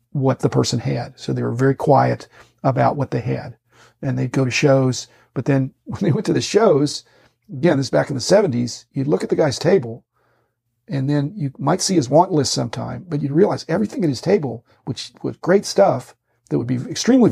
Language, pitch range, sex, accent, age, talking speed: English, 120-150 Hz, male, American, 50-69, 215 wpm